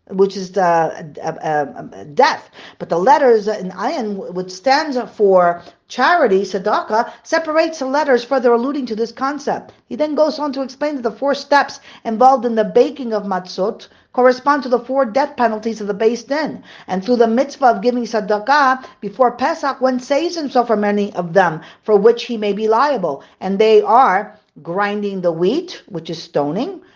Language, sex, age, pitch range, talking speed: English, female, 50-69, 200-275 Hz, 185 wpm